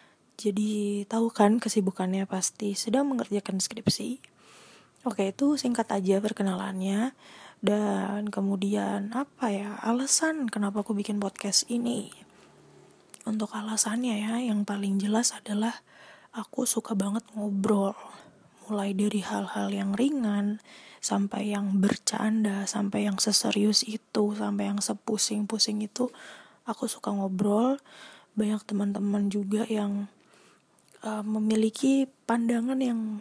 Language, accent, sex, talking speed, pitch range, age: Indonesian, native, female, 110 wpm, 200-225 Hz, 20-39